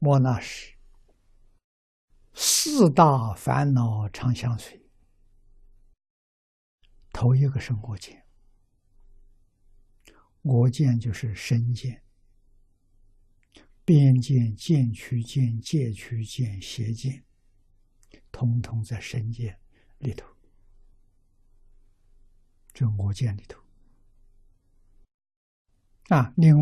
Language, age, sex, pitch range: Chinese, 60-79, male, 95-120 Hz